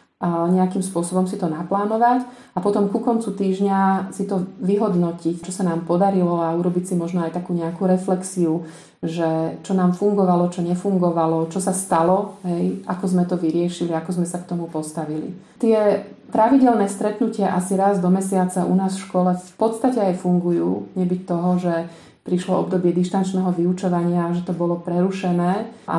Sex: female